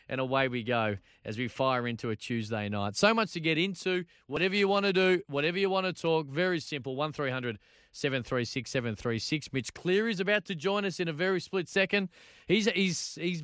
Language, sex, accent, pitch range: English, male, Australian, 135-195 Hz